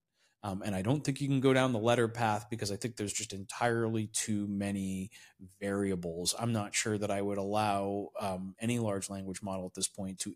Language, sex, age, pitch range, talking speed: English, male, 30-49, 100-125 Hz, 215 wpm